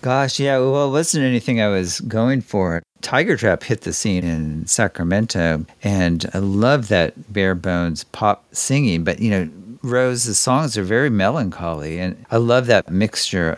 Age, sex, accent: 50-69, male, American